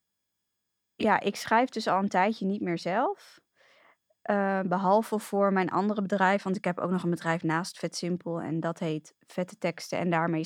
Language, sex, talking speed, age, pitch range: Dutch, female, 185 wpm, 20-39, 170-205 Hz